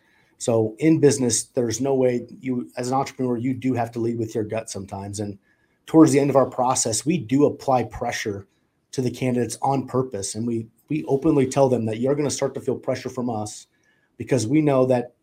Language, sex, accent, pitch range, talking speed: English, male, American, 110-135 Hz, 215 wpm